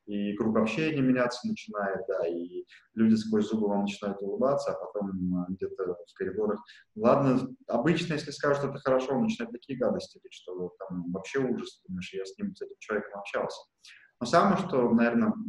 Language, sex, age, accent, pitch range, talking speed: Russian, male, 20-39, native, 115-150 Hz, 175 wpm